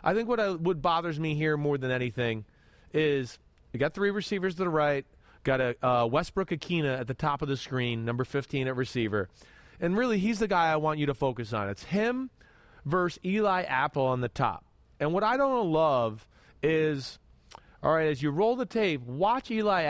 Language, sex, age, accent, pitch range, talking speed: English, male, 30-49, American, 135-200 Hz, 200 wpm